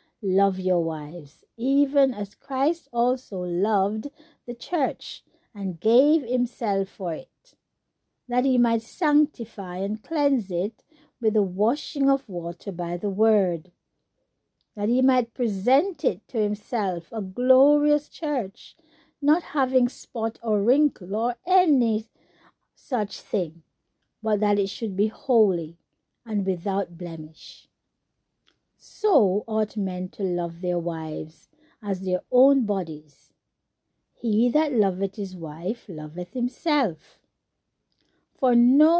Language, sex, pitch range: English, female, 195-270 Hz